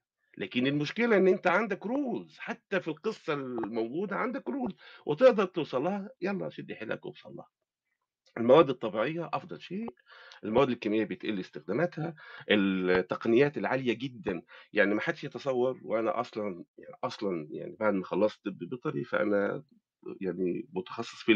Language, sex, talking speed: Arabic, male, 130 wpm